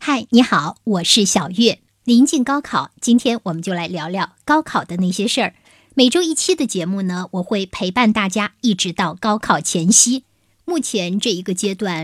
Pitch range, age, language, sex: 180-250 Hz, 50-69, Chinese, male